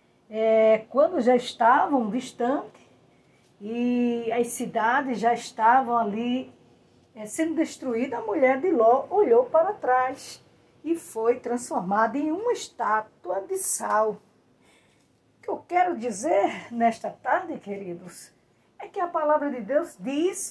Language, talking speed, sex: Portuguese, 125 wpm, female